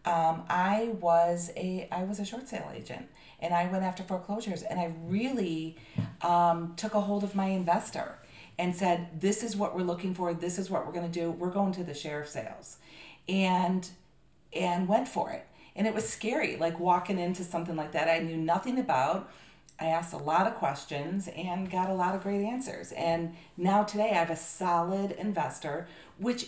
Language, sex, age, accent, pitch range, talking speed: English, female, 40-59, American, 170-215 Hz, 195 wpm